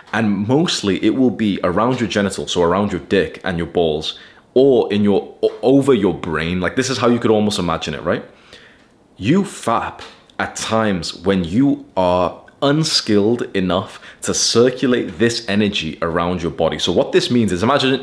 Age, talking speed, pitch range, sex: 20-39, 180 wpm, 90-120 Hz, male